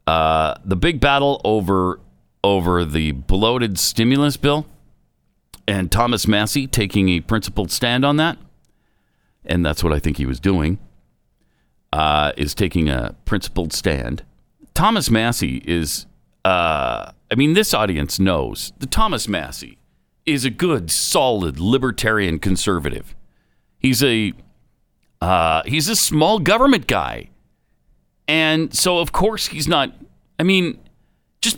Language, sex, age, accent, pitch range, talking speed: English, male, 50-69, American, 85-145 Hz, 130 wpm